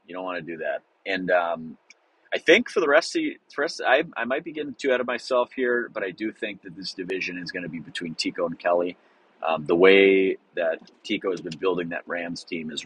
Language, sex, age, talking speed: English, male, 30-49, 245 wpm